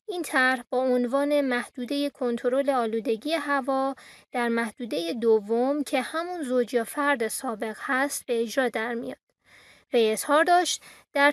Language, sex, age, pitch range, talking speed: Persian, female, 20-39, 240-295 Hz, 140 wpm